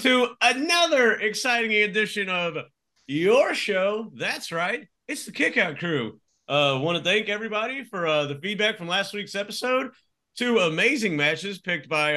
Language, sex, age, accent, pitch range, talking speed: English, male, 40-59, American, 160-230 Hz, 155 wpm